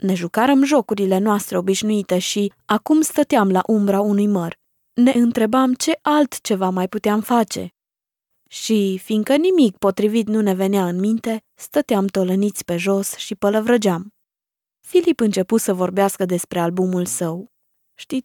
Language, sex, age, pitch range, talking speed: Romanian, female, 20-39, 195-270 Hz, 140 wpm